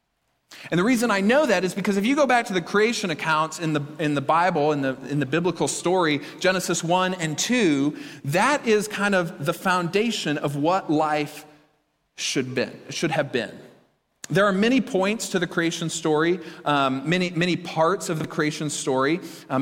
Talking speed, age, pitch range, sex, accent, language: 190 wpm, 40-59, 145-185 Hz, male, American, English